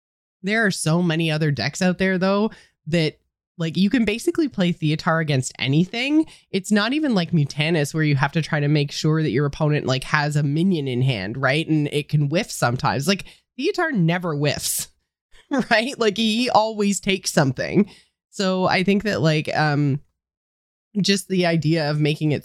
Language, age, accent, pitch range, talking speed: English, 20-39, American, 145-180 Hz, 180 wpm